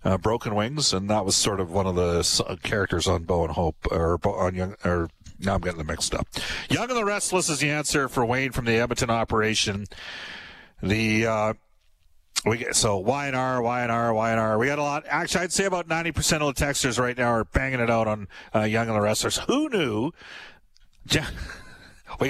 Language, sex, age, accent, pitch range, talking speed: English, male, 50-69, American, 105-140 Hz, 215 wpm